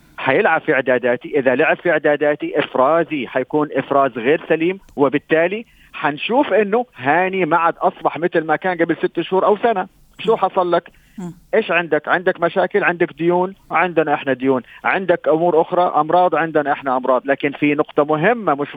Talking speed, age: 165 wpm, 40-59